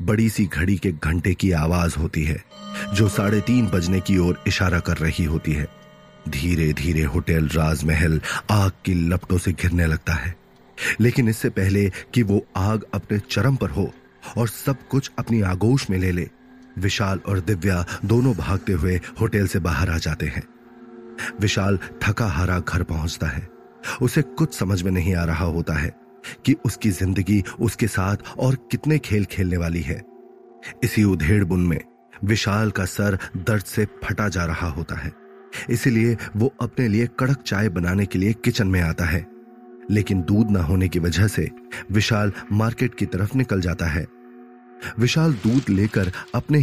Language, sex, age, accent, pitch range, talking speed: Hindi, male, 30-49, native, 90-120 Hz, 170 wpm